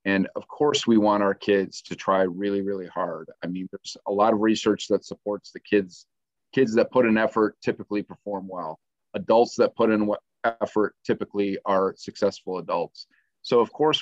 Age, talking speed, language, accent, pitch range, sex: 40-59, 185 wpm, English, American, 100-115 Hz, male